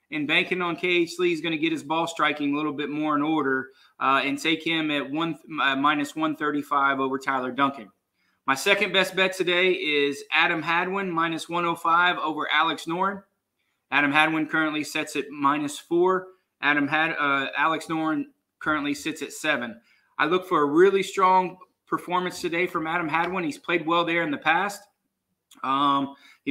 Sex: male